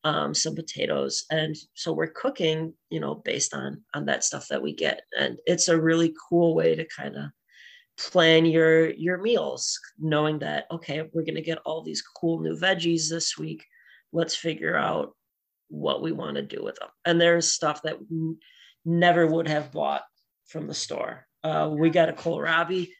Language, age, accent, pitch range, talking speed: English, 30-49, American, 155-180 Hz, 185 wpm